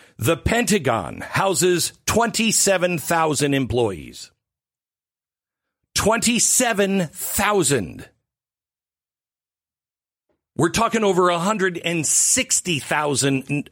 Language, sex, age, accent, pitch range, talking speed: English, male, 50-69, American, 130-200 Hz, 45 wpm